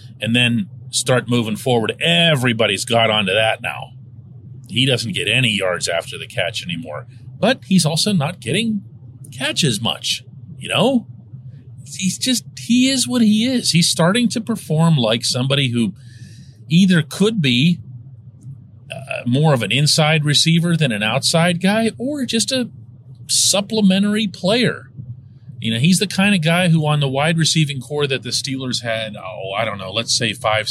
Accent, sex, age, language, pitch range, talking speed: American, male, 40-59, English, 125-180 Hz, 165 wpm